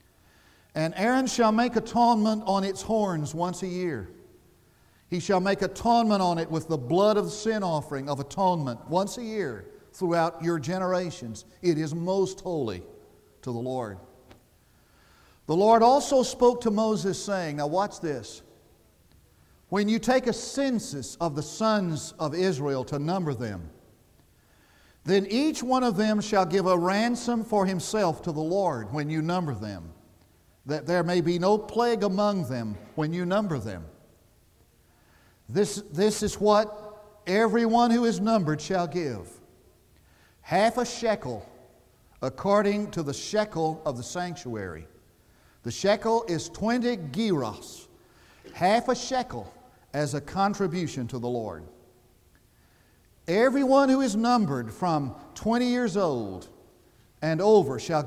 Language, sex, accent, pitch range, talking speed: English, male, American, 125-210 Hz, 140 wpm